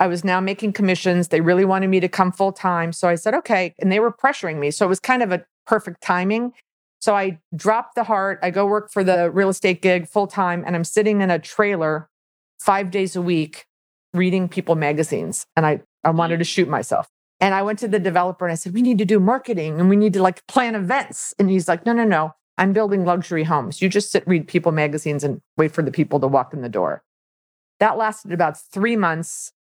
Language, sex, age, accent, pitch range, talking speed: English, female, 40-59, American, 165-205 Hz, 235 wpm